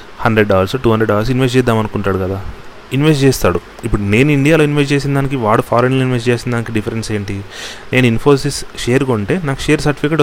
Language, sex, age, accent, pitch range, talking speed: Telugu, male, 30-49, native, 110-135 Hz, 170 wpm